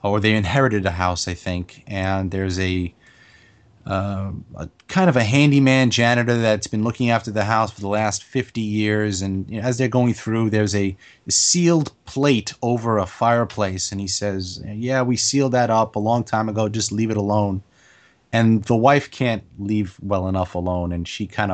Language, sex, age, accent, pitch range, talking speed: English, male, 30-49, American, 100-125 Hz, 195 wpm